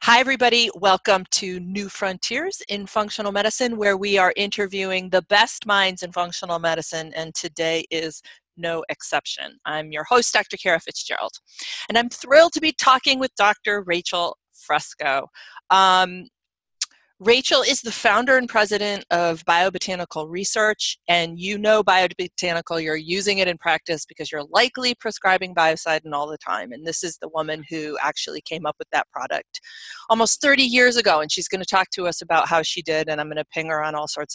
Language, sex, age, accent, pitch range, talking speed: English, female, 40-59, American, 160-205 Hz, 180 wpm